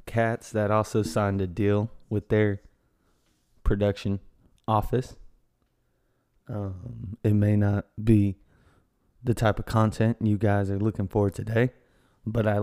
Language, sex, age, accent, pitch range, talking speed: English, male, 20-39, American, 100-120 Hz, 130 wpm